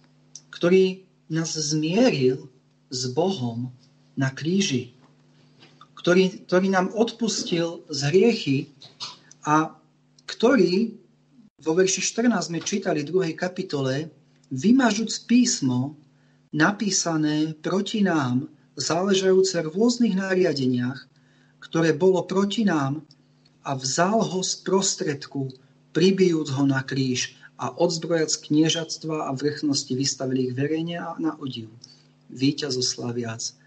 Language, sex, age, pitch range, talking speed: Slovak, male, 40-59, 135-190 Hz, 95 wpm